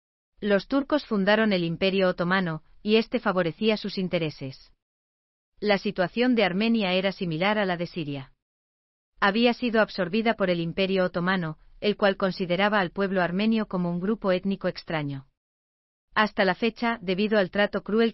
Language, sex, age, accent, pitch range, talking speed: Spanish, female, 40-59, Spanish, 165-205 Hz, 150 wpm